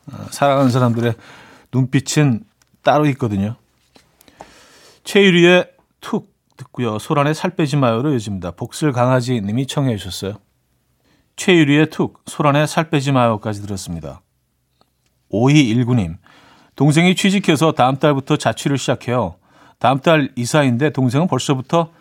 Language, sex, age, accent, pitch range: Korean, male, 40-59, native, 110-155 Hz